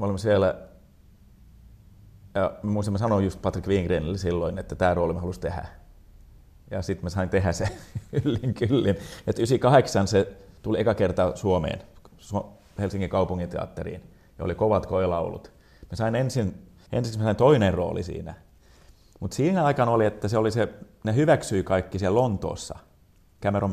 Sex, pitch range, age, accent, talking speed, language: male, 90-110 Hz, 30-49, native, 145 wpm, Finnish